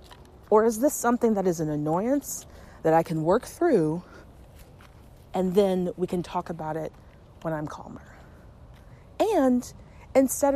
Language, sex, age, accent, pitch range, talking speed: English, female, 30-49, American, 165-230 Hz, 140 wpm